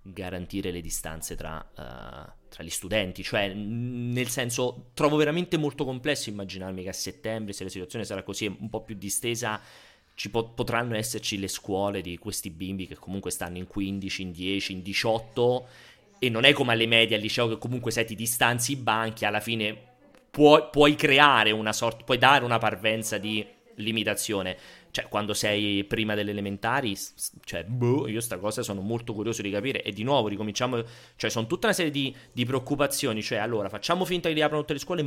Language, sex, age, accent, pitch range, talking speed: Italian, male, 30-49, native, 100-125 Hz, 190 wpm